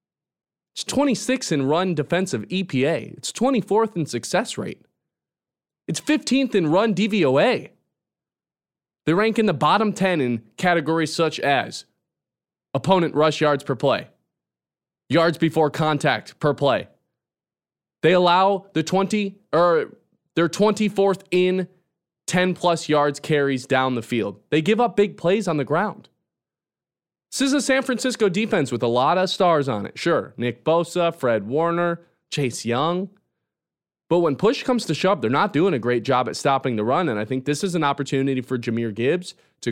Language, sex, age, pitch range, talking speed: English, male, 20-39, 140-195 Hz, 160 wpm